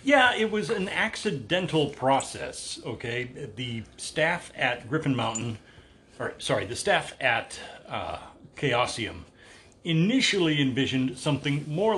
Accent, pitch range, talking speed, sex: American, 120-155 Hz, 115 wpm, male